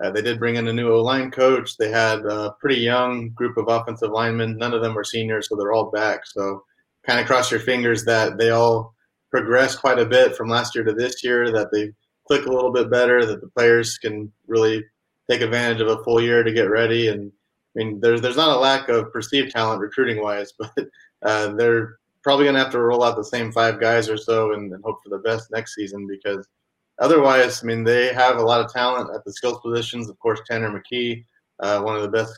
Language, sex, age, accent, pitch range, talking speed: English, male, 30-49, American, 110-120 Hz, 235 wpm